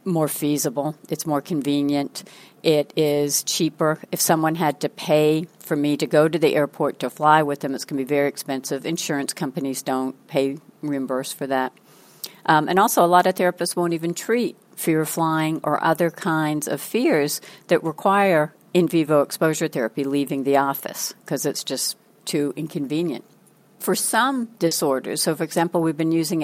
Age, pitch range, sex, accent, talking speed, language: 60-79, 145-170 Hz, female, American, 175 wpm, English